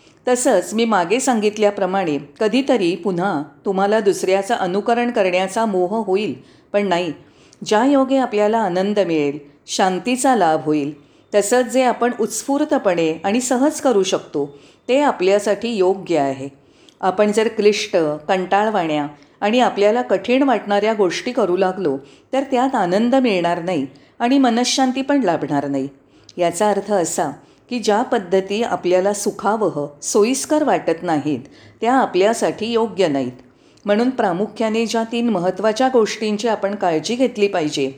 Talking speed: 125 wpm